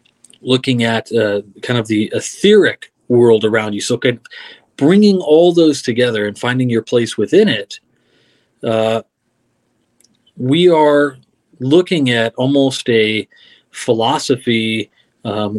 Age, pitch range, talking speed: 30-49, 115-145 Hz, 120 wpm